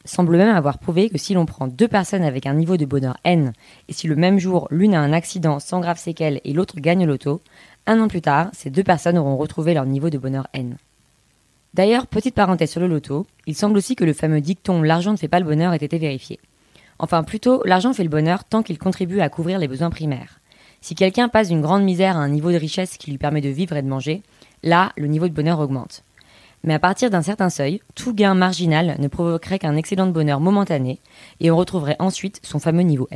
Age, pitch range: 20-39, 150-190 Hz